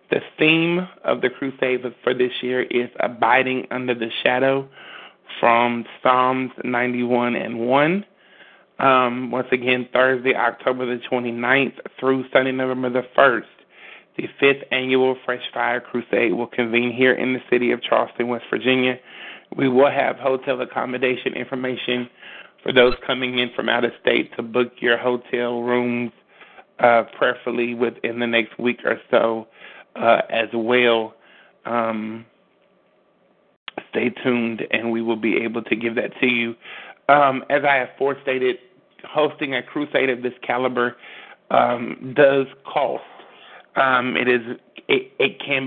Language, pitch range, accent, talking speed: English, 120-130 Hz, American, 145 wpm